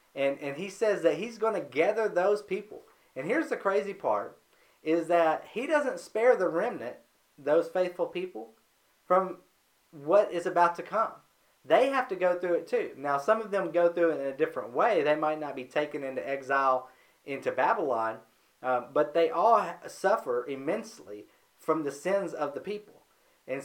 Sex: male